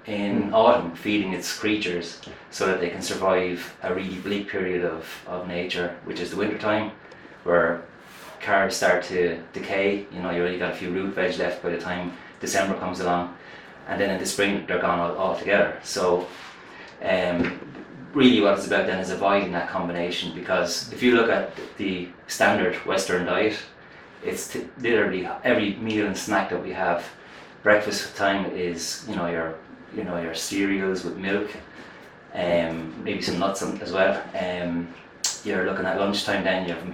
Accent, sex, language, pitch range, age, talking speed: Irish, male, English, 85-100 Hz, 30-49, 175 wpm